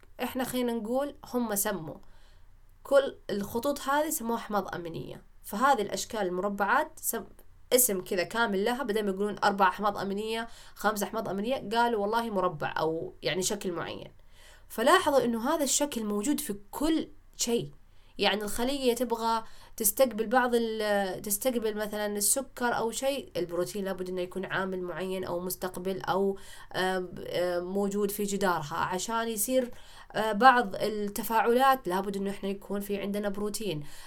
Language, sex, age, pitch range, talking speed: Arabic, female, 20-39, 180-230 Hz, 135 wpm